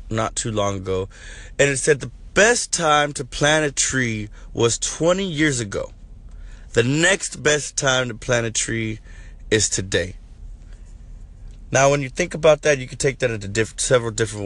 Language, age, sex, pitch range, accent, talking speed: English, 20-39, male, 95-130 Hz, American, 175 wpm